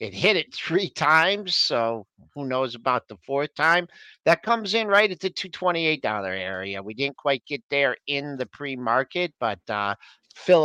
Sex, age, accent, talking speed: male, 50-69, American, 175 wpm